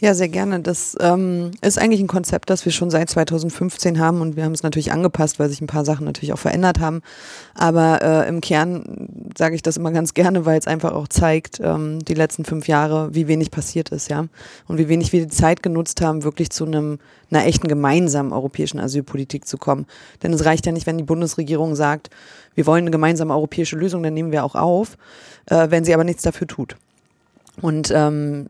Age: 20-39